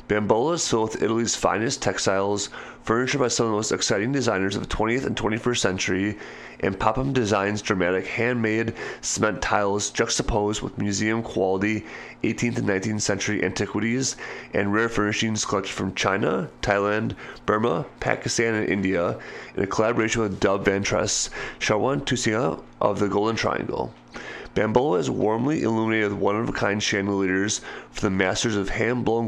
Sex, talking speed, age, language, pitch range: male, 145 wpm, 30-49, English, 100-115 Hz